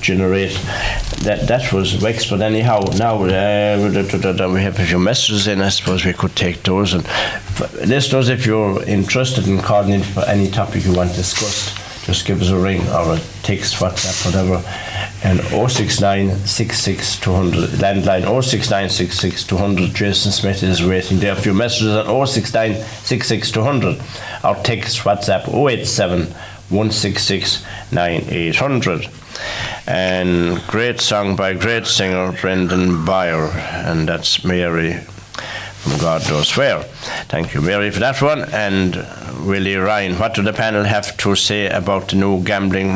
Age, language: 60-79, English